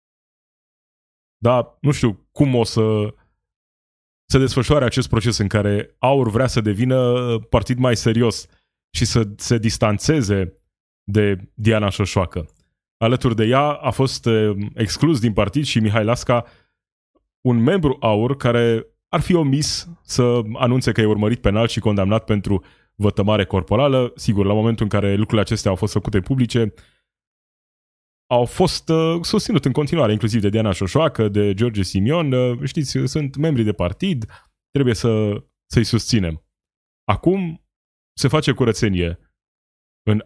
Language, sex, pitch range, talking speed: Romanian, male, 105-135 Hz, 135 wpm